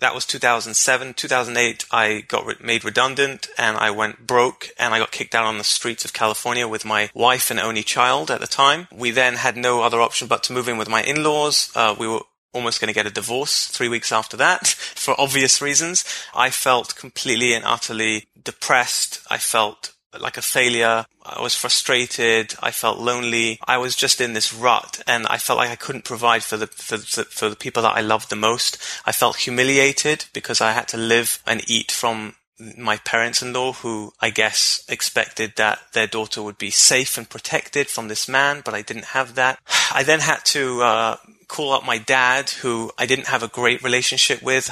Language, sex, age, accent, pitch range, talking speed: English, male, 30-49, British, 110-125 Hz, 205 wpm